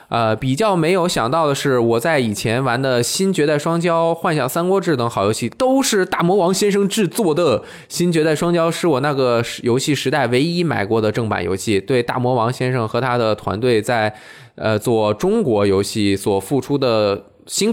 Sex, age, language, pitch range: male, 20-39, Chinese, 115-165 Hz